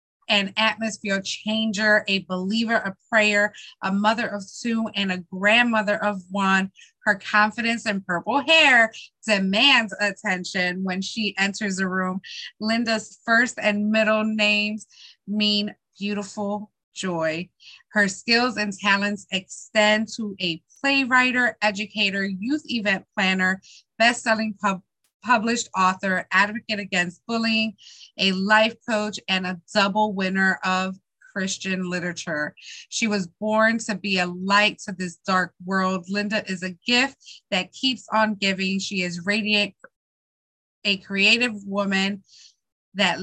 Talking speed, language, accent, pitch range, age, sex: 125 wpm, English, American, 190-220 Hz, 20-39, female